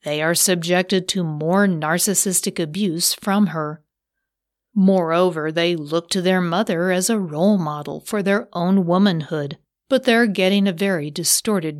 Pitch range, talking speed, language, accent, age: 170-205 Hz, 145 wpm, English, American, 40-59